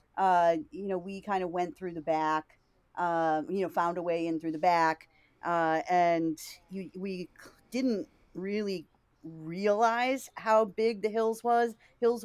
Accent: American